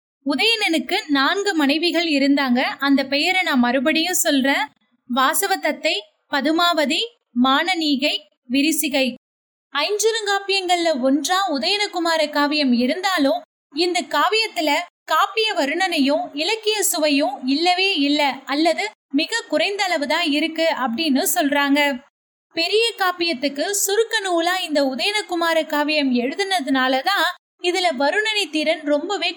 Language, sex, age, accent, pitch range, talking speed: Tamil, female, 20-39, native, 275-360 Hz, 90 wpm